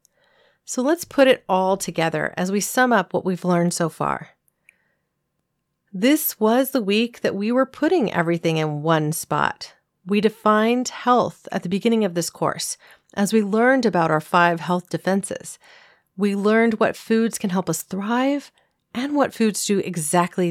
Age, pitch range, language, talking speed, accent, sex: 40-59, 180-235 Hz, English, 165 wpm, American, female